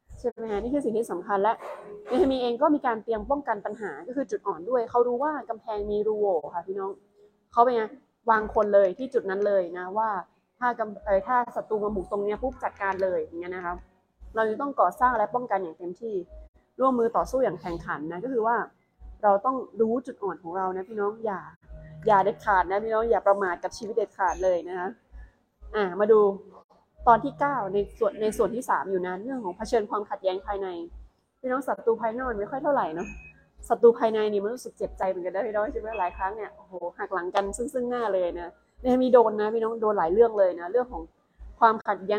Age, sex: 20-39, female